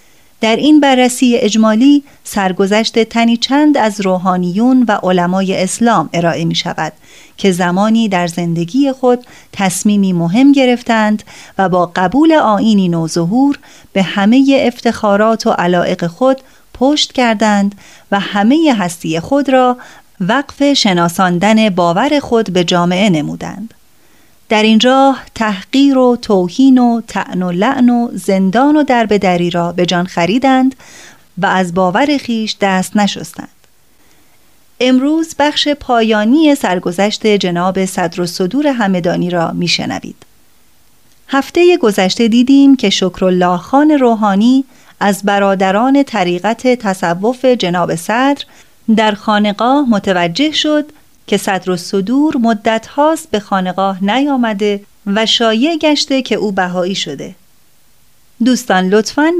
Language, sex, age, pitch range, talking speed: Persian, female, 30-49, 185-260 Hz, 120 wpm